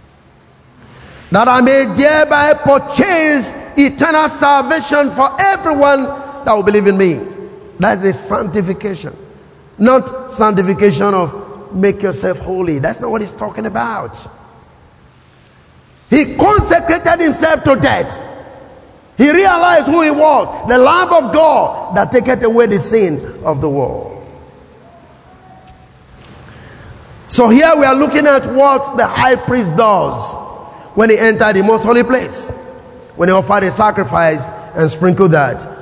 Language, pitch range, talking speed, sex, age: English, 160-255 Hz, 130 wpm, male, 50-69